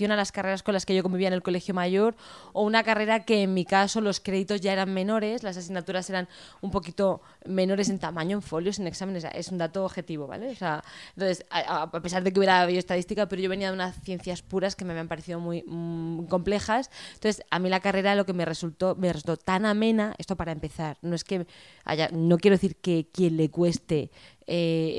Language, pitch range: Spanish, 170-200 Hz